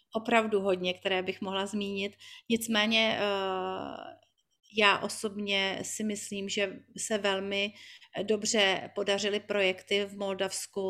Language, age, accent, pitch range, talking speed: Czech, 40-59, native, 185-210 Hz, 105 wpm